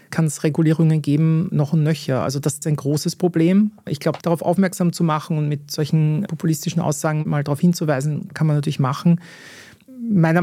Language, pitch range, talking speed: German, 145-165 Hz, 185 wpm